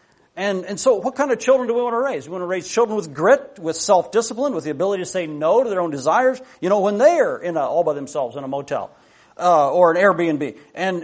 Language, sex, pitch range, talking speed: English, male, 175-220 Hz, 265 wpm